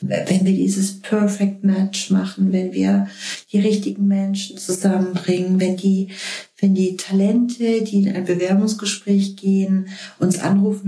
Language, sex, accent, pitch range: German, female, German, 180-200 Hz